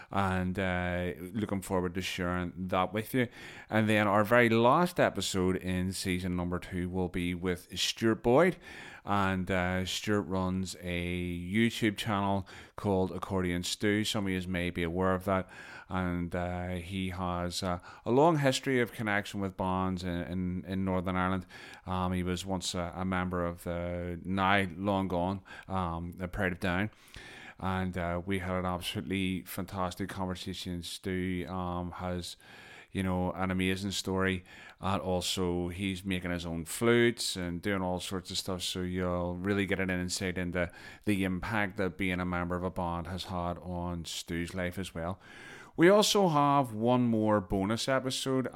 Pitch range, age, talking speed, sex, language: 90-100 Hz, 30-49, 165 wpm, male, English